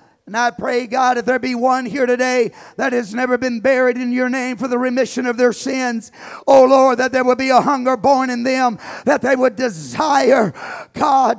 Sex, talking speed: male, 210 wpm